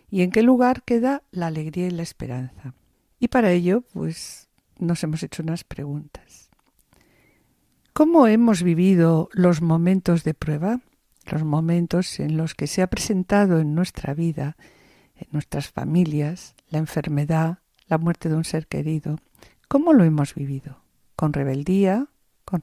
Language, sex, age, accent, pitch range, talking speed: Spanish, female, 50-69, Spanish, 160-195 Hz, 145 wpm